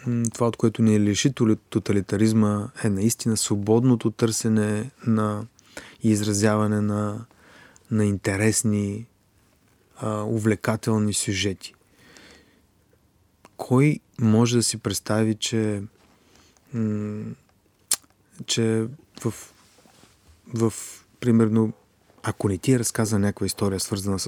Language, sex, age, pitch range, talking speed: Bulgarian, male, 30-49, 100-115 Hz, 90 wpm